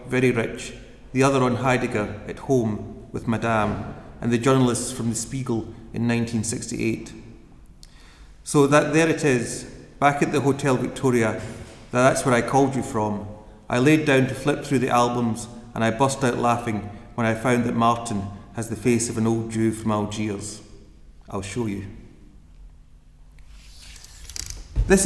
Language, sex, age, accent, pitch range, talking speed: English, male, 30-49, British, 105-130 Hz, 155 wpm